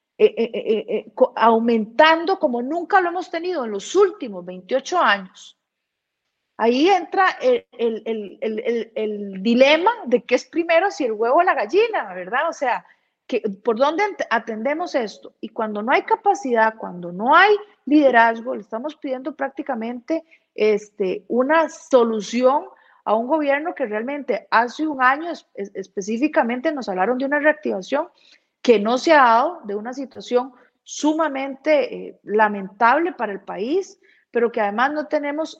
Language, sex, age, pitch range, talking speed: Spanish, female, 40-59, 225-305 Hz, 155 wpm